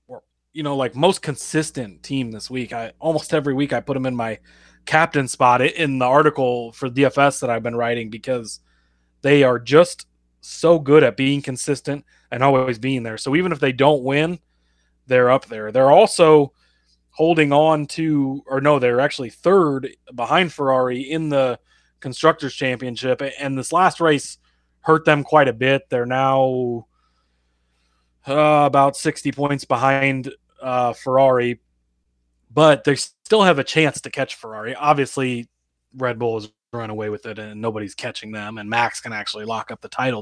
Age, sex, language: 20-39, male, English